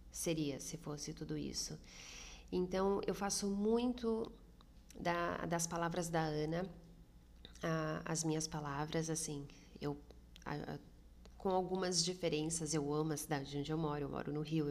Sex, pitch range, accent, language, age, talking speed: female, 145-170 Hz, Brazilian, Portuguese, 30-49, 145 wpm